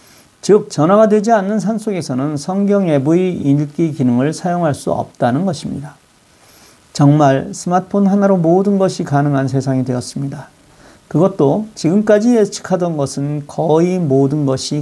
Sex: male